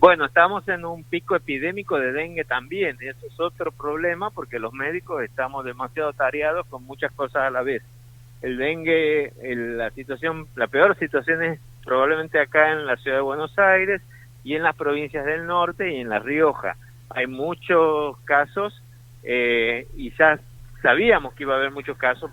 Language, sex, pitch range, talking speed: Spanish, male, 120-150 Hz, 170 wpm